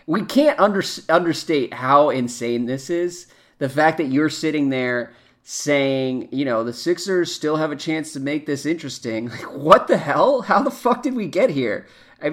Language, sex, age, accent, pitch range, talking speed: English, male, 30-49, American, 125-155 Hz, 180 wpm